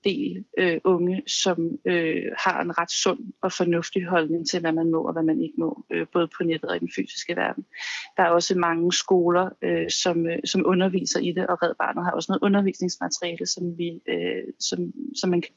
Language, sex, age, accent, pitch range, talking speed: Danish, female, 30-49, native, 170-205 Hz, 210 wpm